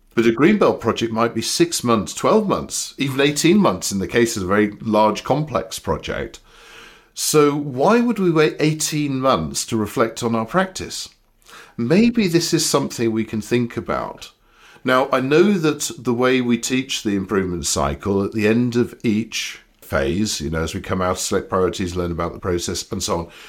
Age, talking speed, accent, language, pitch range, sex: 50-69, 190 wpm, British, English, 95-135 Hz, male